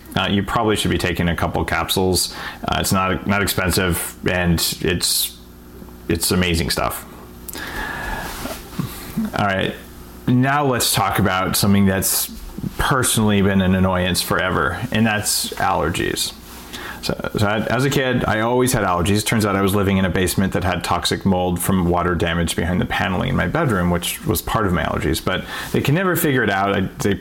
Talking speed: 175 wpm